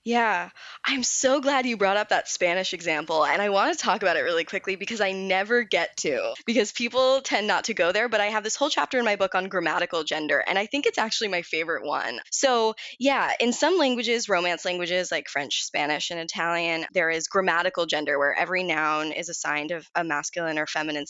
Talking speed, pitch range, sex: 220 wpm, 165-220 Hz, female